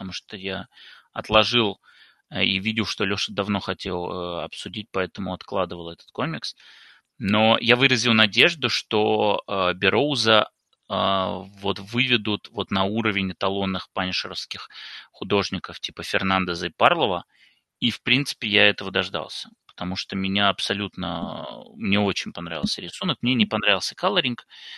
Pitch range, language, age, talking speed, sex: 95-110 Hz, Russian, 20-39, 130 wpm, male